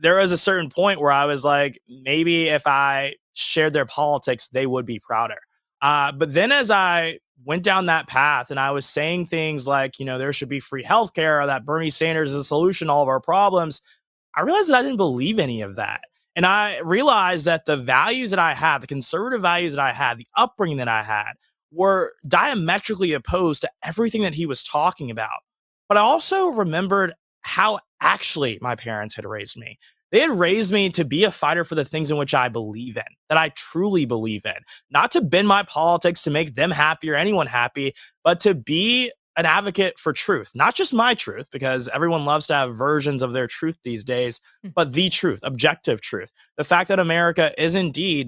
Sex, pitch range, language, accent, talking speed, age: male, 140-180 Hz, English, American, 210 wpm, 20-39